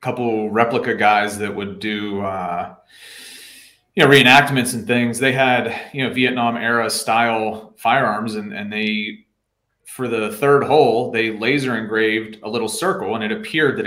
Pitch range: 110-140 Hz